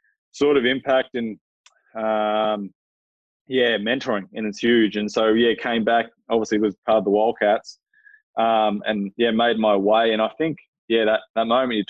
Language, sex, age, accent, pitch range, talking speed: English, male, 20-39, Australian, 100-115 Hz, 175 wpm